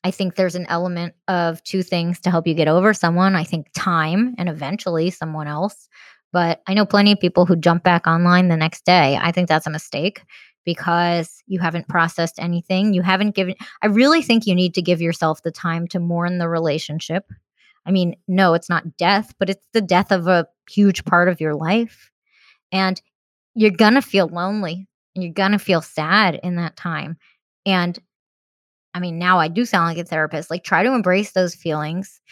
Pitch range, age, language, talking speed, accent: 170-210 Hz, 20-39, English, 200 wpm, American